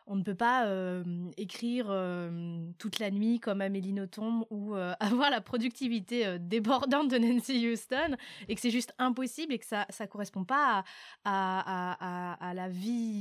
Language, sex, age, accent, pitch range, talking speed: French, female, 20-39, French, 210-250 Hz, 180 wpm